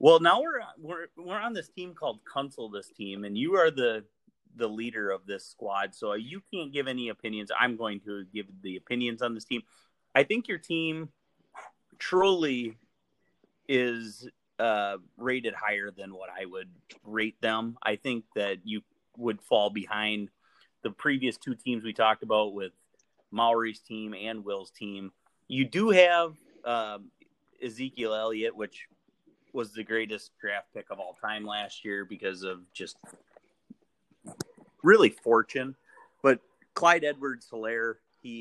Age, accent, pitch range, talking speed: 30-49, American, 100-130 Hz, 155 wpm